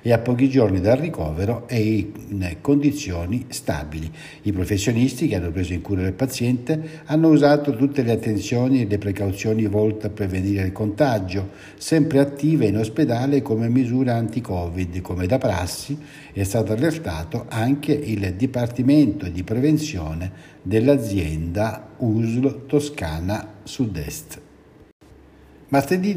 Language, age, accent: Italian, 60-79, native